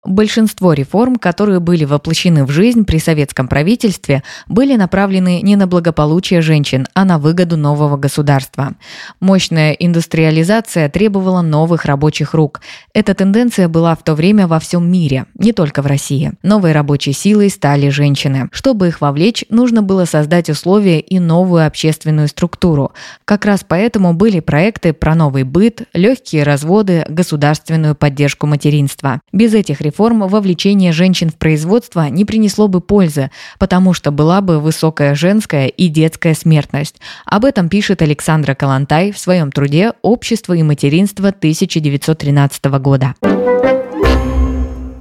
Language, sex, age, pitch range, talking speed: Russian, female, 20-39, 150-195 Hz, 140 wpm